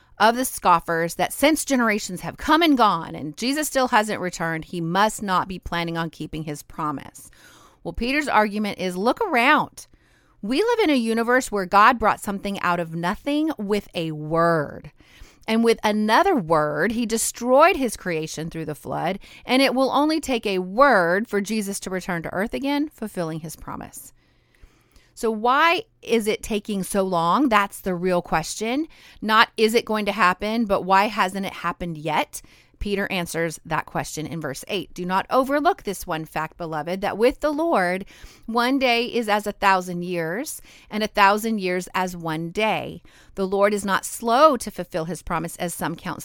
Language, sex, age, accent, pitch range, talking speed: English, female, 30-49, American, 175-235 Hz, 180 wpm